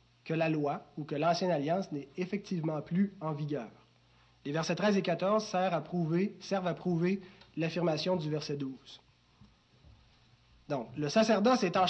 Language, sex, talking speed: French, male, 155 wpm